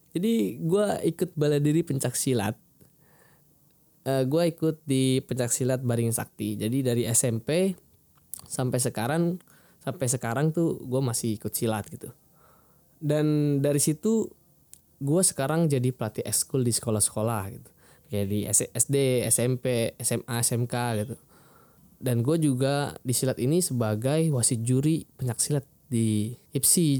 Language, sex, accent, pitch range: Indonesian, male, native, 115-150 Hz